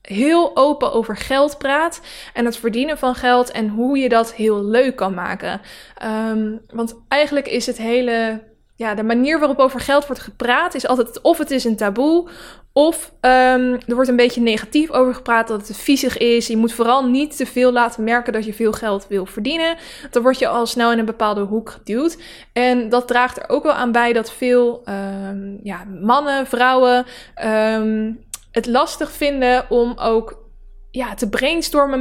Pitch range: 225-265 Hz